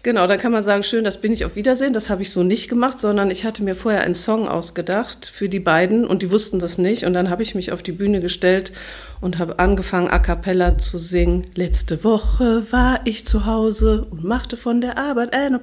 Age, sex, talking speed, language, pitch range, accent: 50-69, female, 235 wpm, German, 180-220 Hz, German